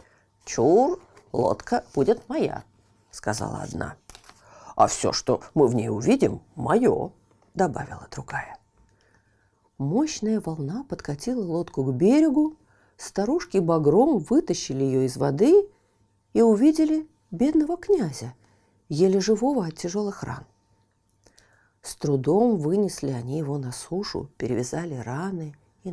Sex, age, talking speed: female, 40-59, 110 wpm